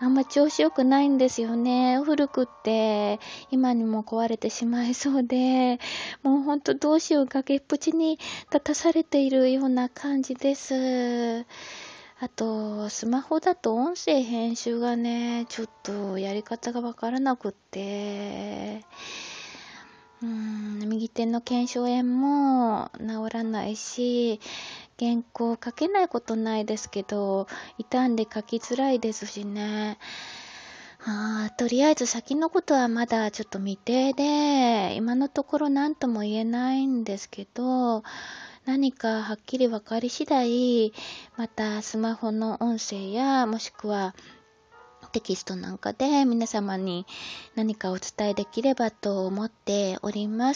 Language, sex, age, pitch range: Japanese, female, 20-39, 215-265 Hz